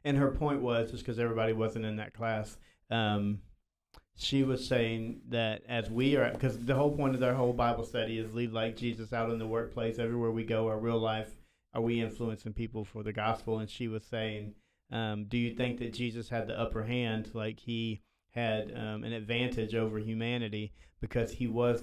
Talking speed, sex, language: 205 wpm, male, English